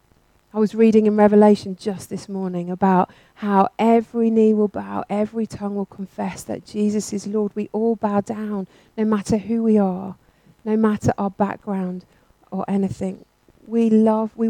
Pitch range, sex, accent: 185-215 Hz, female, British